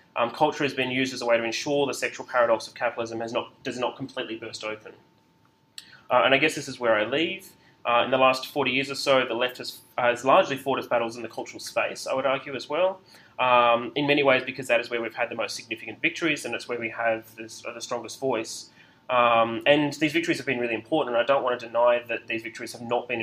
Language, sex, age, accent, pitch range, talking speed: English, male, 20-39, Australian, 115-135 Hz, 250 wpm